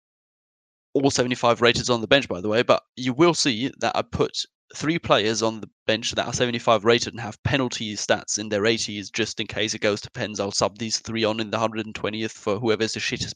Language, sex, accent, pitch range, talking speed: English, male, British, 105-120 Hz, 230 wpm